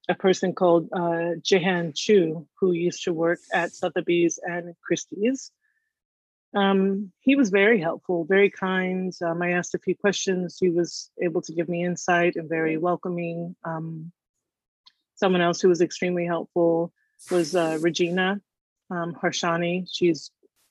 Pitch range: 165-190 Hz